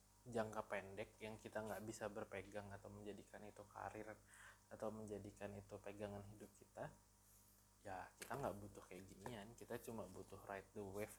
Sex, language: male, Indonesian